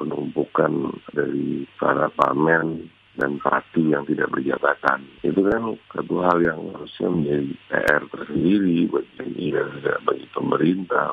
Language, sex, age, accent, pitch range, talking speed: Indonesian, male, 50-69, native, 75-90 Hz, 120 wpm